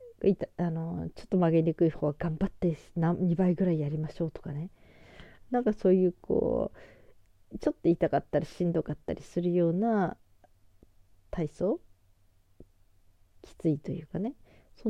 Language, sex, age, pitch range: Japanese, female, 40-59, 150-195 Hz